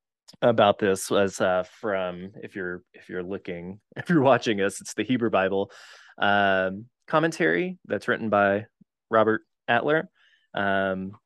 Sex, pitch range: male, 90-110 Hz